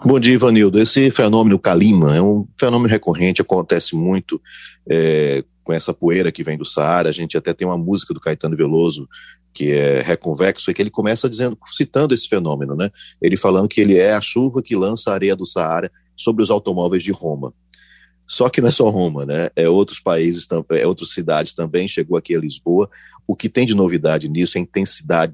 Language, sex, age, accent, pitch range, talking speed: Portuguese, male, 40-59, Brazilian, 80-110 Hz, 205 wpm